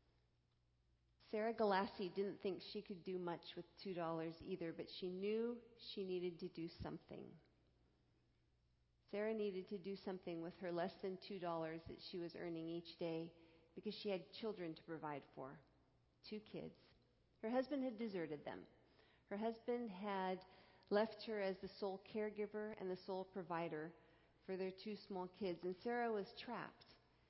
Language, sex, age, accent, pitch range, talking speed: English, female, 40-59, American, 165-210 Hz, 155 wpm